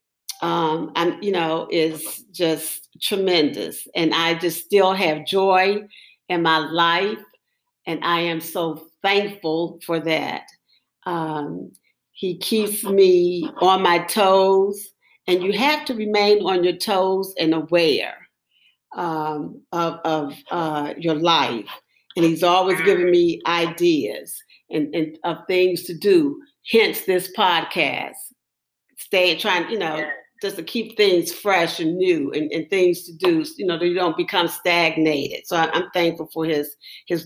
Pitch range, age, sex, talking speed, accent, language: 160-185 Hz, 50-69, female, 150 wpm, American, English